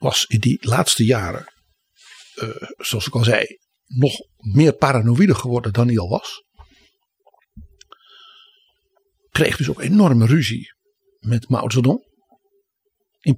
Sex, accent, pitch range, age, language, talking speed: male, Dutch, 120-190 Hz, 60-79, Dutch, 120 wpm